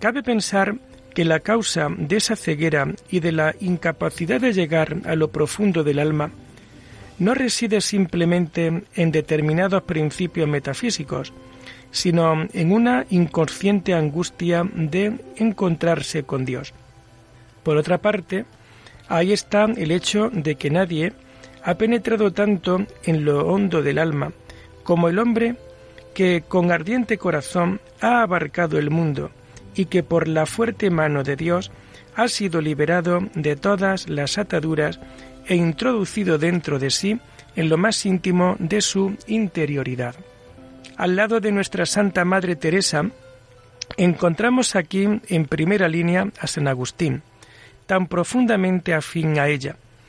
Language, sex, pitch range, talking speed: Spanish, male, 150-195 Hz, 135 wpm